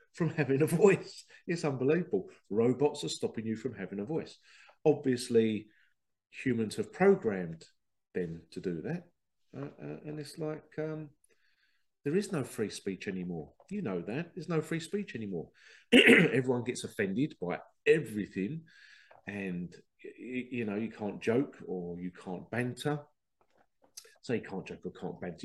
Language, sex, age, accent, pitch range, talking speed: English, male, 40-59, British, 100-155 Hz, 155 wpm